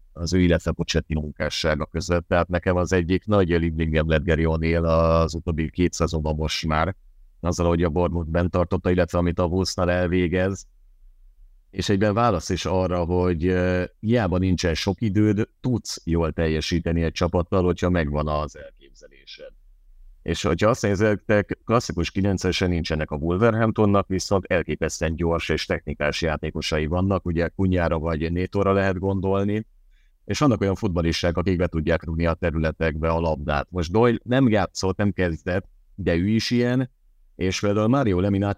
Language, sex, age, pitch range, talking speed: Hungarian, male, 50-69, 80-95 Hz, 150 wpm